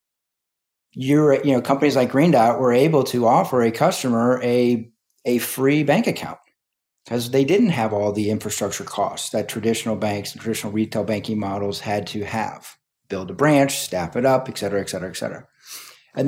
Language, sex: English, male